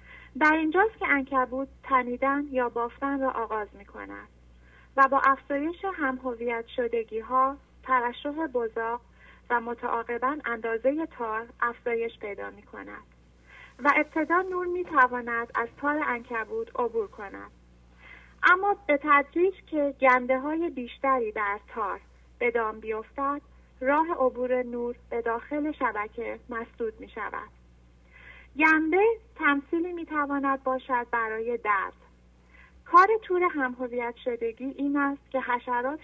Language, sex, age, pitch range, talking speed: English, female, 30-49, 225-285 Hz, 120 wpm